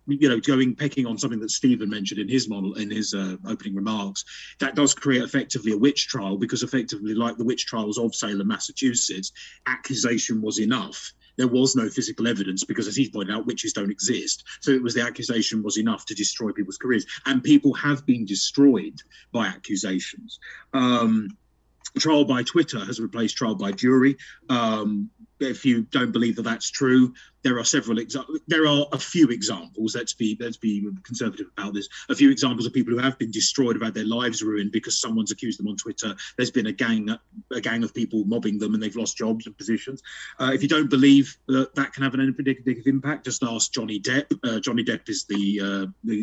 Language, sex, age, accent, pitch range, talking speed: English, male, 30-49, British, 110-140 Hz, 205 wpm